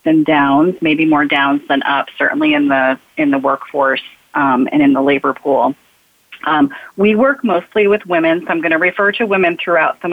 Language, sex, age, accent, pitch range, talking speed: English, female, 30-49, American, 160-250 Hz, 200 wpm